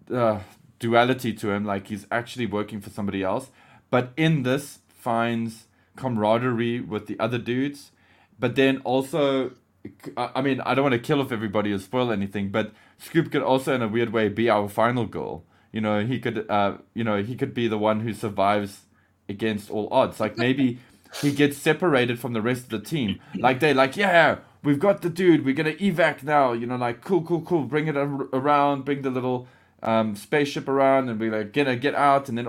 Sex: male